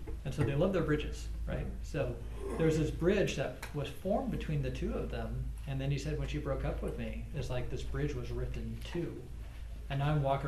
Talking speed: 235 wpm